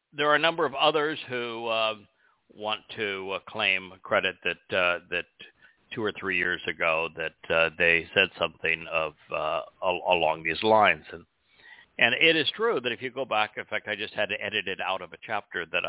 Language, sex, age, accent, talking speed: English, male, 60-79, American, 210 wpm